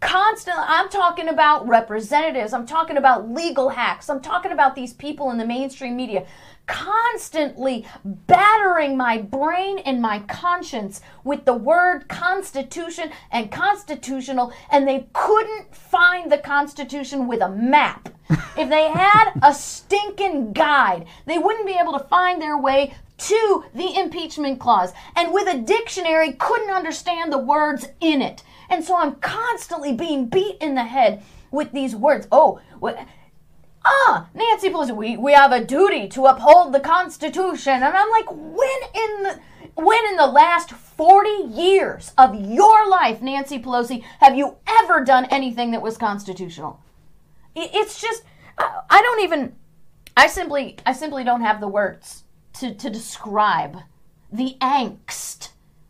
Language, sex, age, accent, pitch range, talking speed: English, female, 40-59, American, 250-360 Hz, 150 wpm